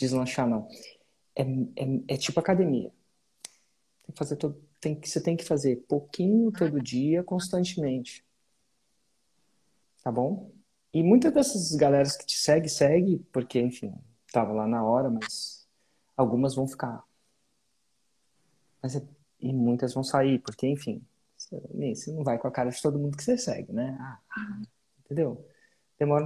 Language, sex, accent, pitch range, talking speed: Portuguese, male, Brazilian, 130-165 Hz, 150 wpm